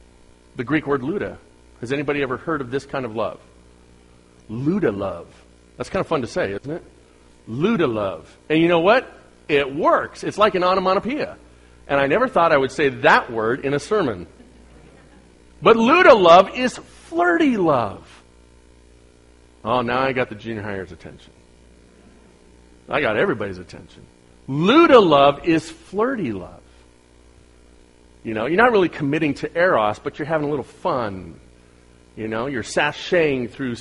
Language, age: English, 40-59